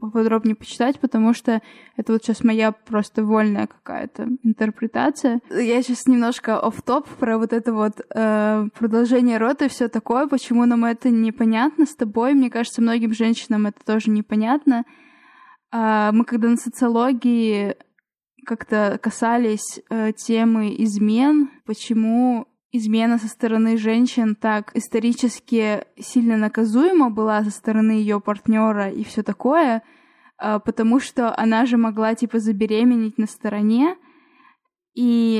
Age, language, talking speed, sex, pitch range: 20-39, Russian, 125 wpm, female, 220-265 Hz